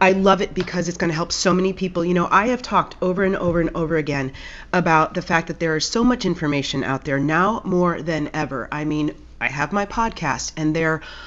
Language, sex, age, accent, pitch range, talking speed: English, female, 30-49, American, 155-190 Hz, 240 wpm